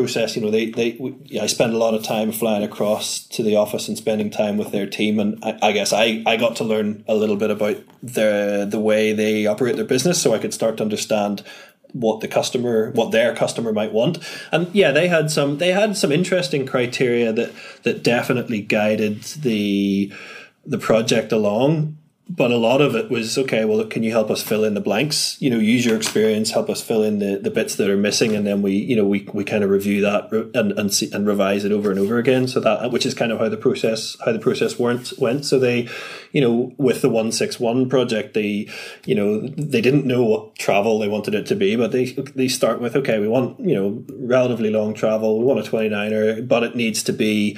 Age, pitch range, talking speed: 20-39, 105-130 Hz, 230 wpm